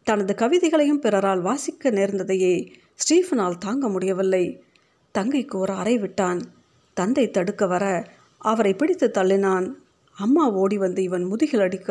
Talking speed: 120 wpm